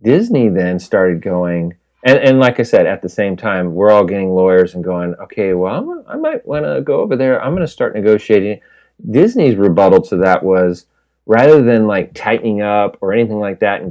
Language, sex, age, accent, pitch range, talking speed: English, male, 40-59, American, 90-115 Hz, 210 wpm